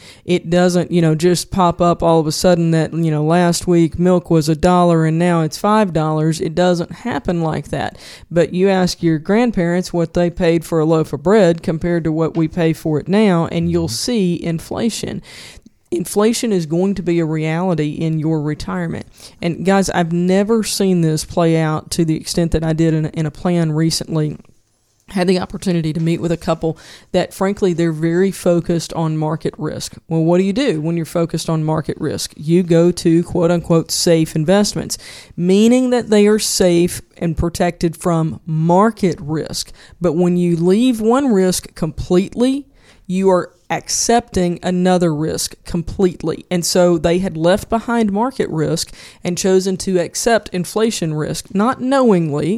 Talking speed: 180 wpm